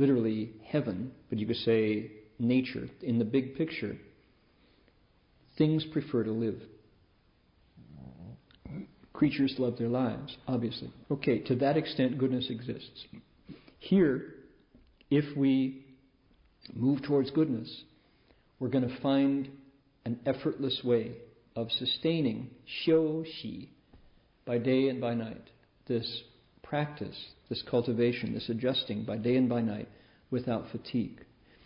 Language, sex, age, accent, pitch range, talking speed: English, male, 50-69, American, 115-135 Hz, 115 wpm